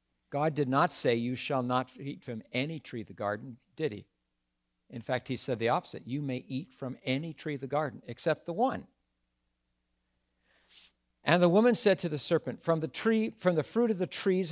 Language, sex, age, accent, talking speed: English, male, 50-69, American, 205 wpm